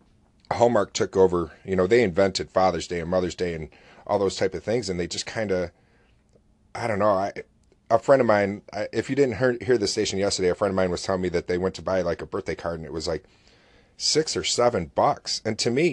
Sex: male